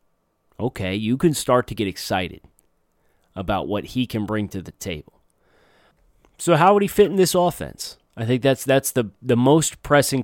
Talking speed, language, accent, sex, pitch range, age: 180 wpm, English, American, male, 100-130 Hz, 30-49